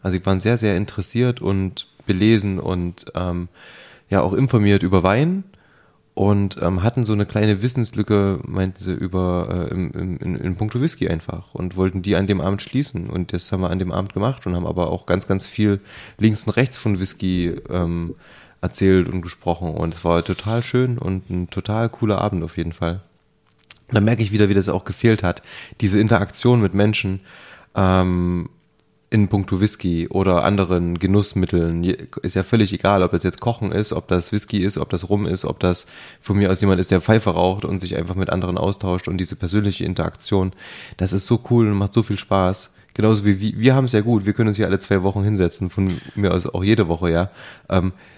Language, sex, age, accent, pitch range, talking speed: German, male, 20-39, German, 90-105 Hz, 210 wpm